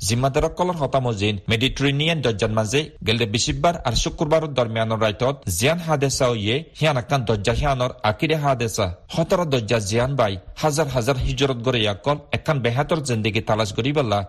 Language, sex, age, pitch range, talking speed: Bengali, male, 40-59, 110-150 Hz, 135 wpm